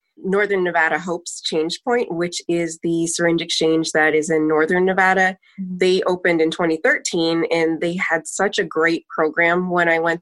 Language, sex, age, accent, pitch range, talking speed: English, female, 20-39, American, 160-185 Hz, 170 wpm